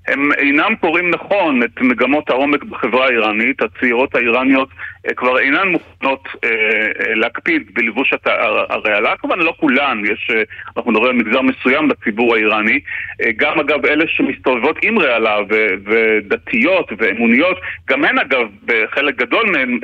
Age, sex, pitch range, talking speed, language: 30-49, male, 135-225 Hz, 125 wpm, Hebrew